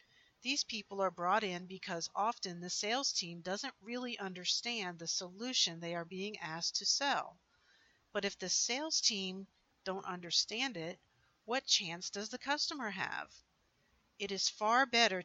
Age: 50-69